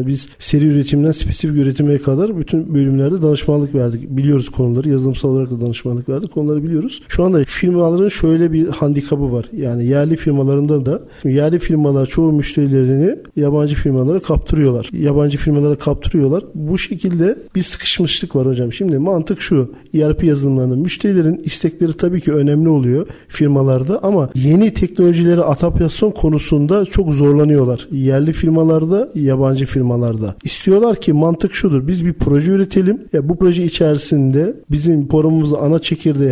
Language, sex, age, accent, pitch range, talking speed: Turkish, male, 40-59, native, 140-175 Hz, 140 wpm